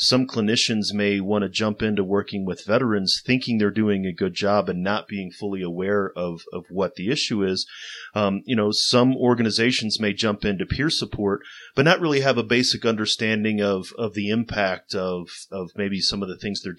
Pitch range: 95-115 Hz